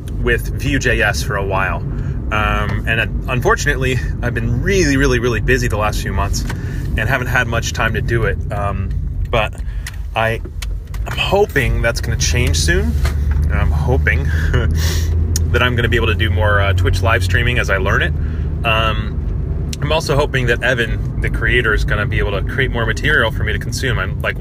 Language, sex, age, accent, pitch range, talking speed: English, male, 30-49, American, 85-115 Hz, 180 wpm